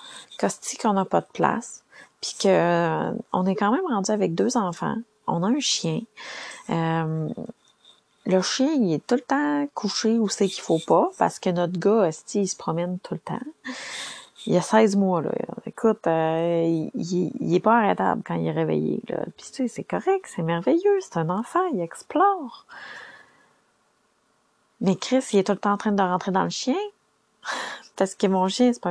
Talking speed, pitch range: 190 wpm, 180-255 Hz